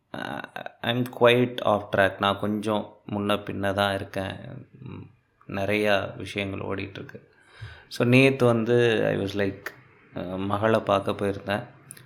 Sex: male